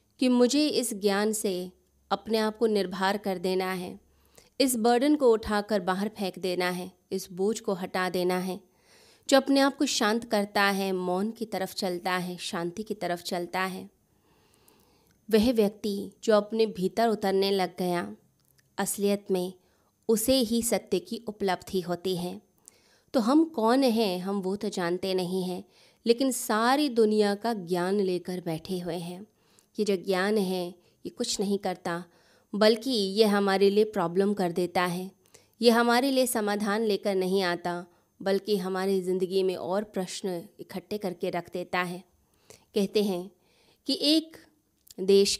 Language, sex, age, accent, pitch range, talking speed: Hindi, female, 20-39, native, 185-215 Hz, 155 wpm